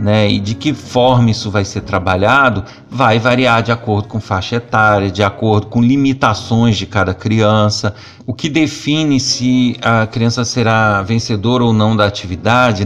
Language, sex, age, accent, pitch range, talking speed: Portuguese, male, 50-69, Brazilian, 105-130 Hz, 165 wpm